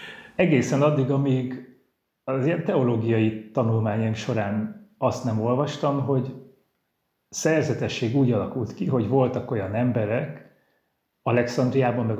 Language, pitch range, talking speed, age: Hungarian, 110-135 Hz, 105 wpm, 30-49